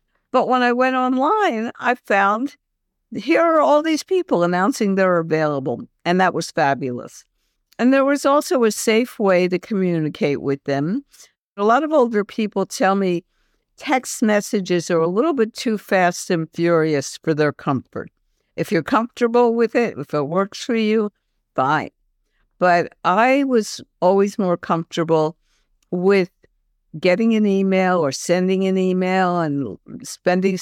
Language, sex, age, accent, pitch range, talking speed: English, female, 60-79, American, 165-230 Hz, 150 wpm